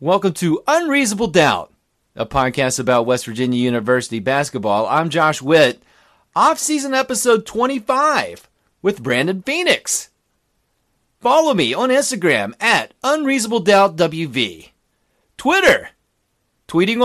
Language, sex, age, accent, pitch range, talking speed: English, male, 40-59, American, 140-225 Hz, 100 wpm